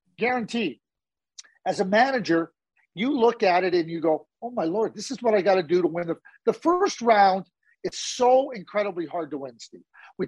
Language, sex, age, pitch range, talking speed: English, male, 40-59, 180-265 Hz, 205 wpm